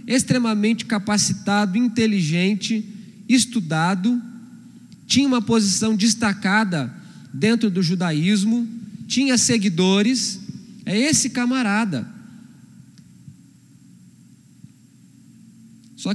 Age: 20-39